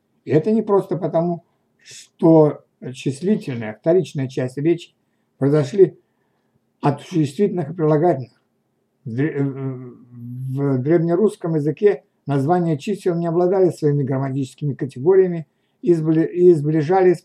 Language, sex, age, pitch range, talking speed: Russian, male, 60-79, 140-170 Hz, 95 wpm